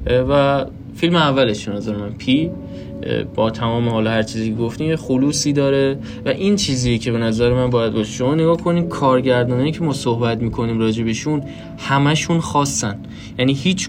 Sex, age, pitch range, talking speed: male, 10-29, 115-135 Hz, 165 wpm